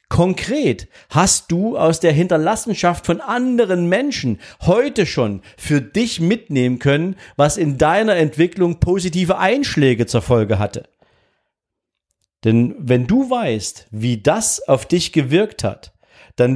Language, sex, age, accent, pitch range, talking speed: German, male, 50-69, German, 115-170 Hz, 125 wpm